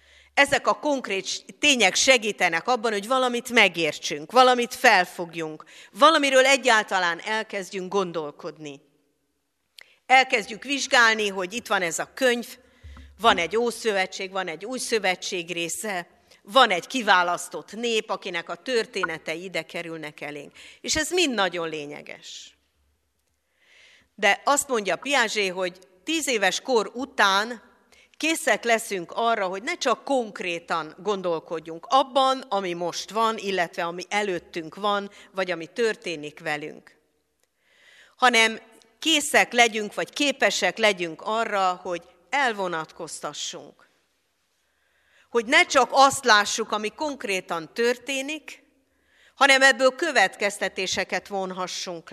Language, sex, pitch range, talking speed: Hungarian, female, 180-250 Hz, 110 wpm